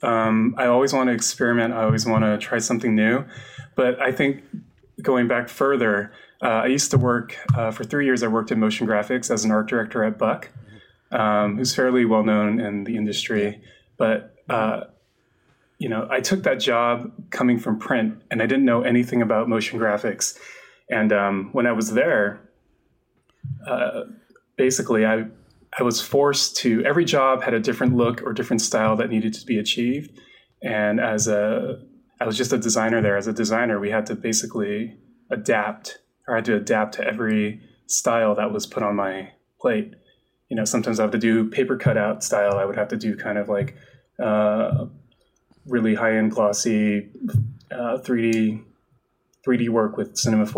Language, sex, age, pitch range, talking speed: English, male, 20-39, 105-120 Hz, 180 wpm